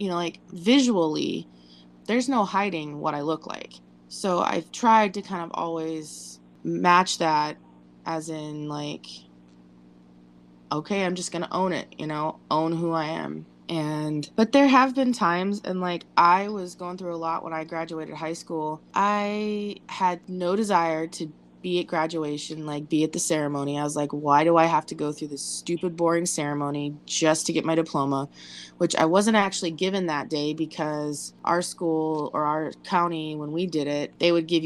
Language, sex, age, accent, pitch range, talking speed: English, female, 20-39, American, 150-190 Hz, 185 wpm